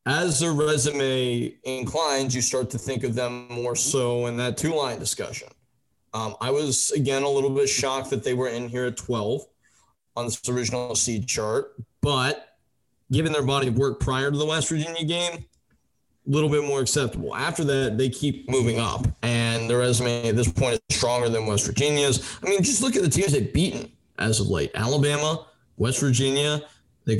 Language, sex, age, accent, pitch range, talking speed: English, male, 20-39, American, 120-145 Hz, 190 wpm